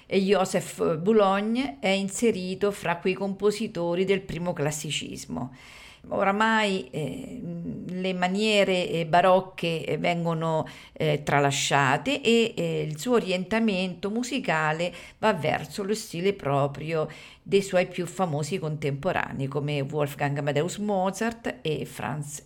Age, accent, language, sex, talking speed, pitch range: 50-69, native, Italian, female, 105 wpm, 155-210 Hz